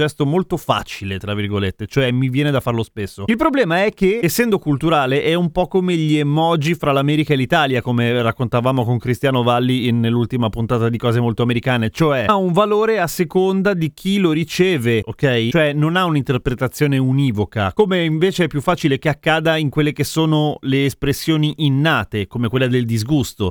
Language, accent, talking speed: Italian, native, 185 wpm